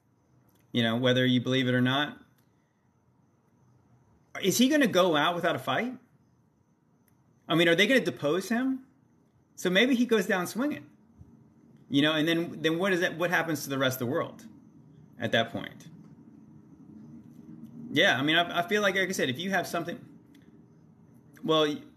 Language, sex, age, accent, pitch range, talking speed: English, male, 30-49, American, 125-175 Hz, 180 wpm